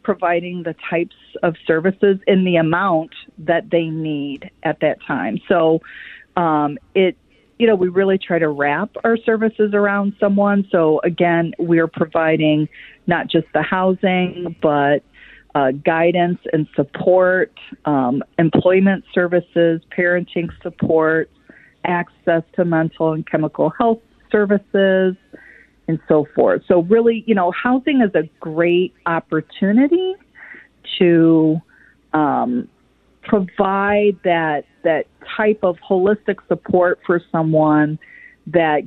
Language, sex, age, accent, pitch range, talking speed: English, female, 40-59, American, 160-200 Hz, 120 wpm